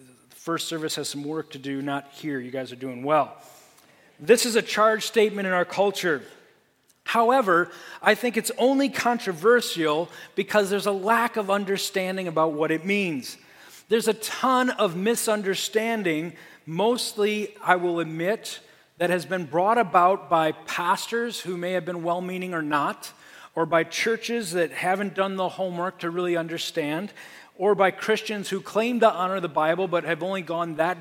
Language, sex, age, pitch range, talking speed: English, male, 40-59, 160-205 Hz, 165 wpm